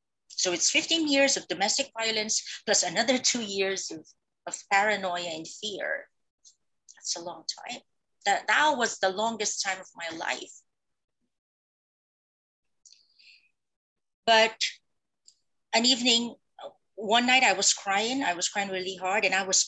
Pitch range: 185-230 Hz